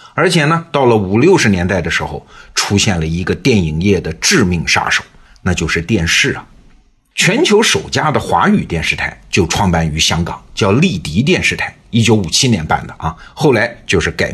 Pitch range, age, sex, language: 85-115 Hz, 50-69, male, Chinese